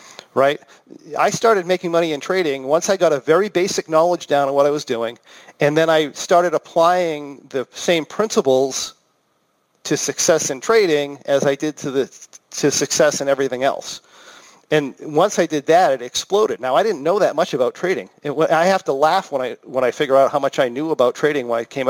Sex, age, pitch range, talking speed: male, 40-59, 140-180 Hz, 210 wpm